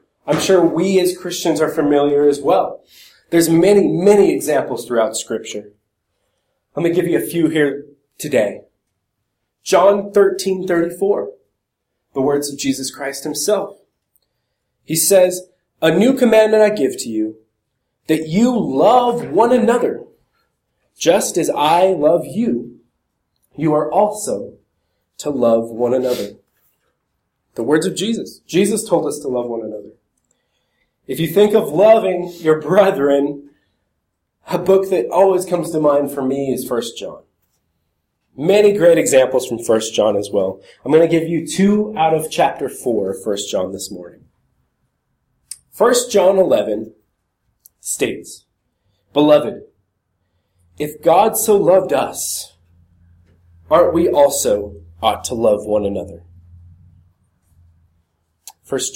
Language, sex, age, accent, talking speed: English, male, 30-49, American, 135 wpm